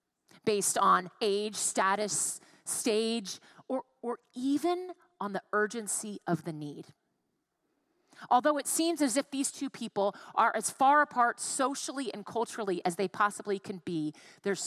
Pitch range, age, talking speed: 195-255 Hz, 30-49, 145 wpm